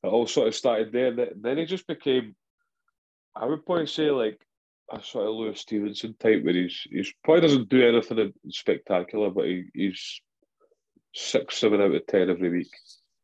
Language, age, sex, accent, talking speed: English, 20-39, male, British, 180 wpm